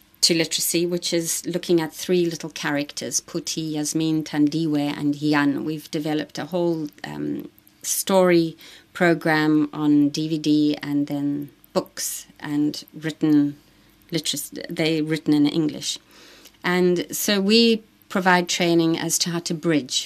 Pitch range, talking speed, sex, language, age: 150-170 Hz, 125 wpm, female, English, 30-49